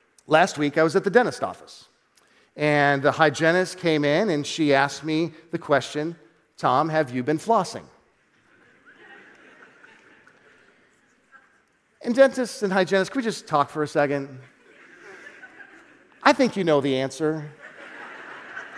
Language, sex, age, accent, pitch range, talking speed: English, male, 40-59, American, 170-265 Hz, 130 wpm